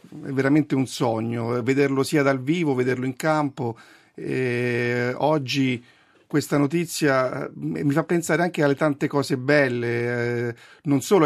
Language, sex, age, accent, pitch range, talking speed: Italian, male, 50-69, native, 125-145 Hz, 130 wpm